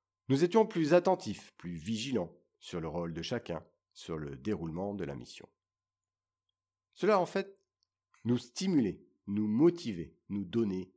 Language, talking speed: French, 140 wpm